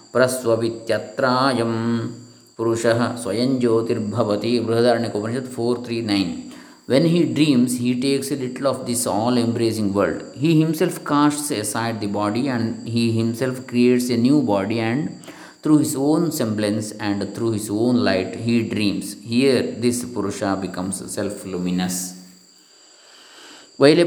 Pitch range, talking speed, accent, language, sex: 110-145 Hz, 115 wpm, Indian, English, male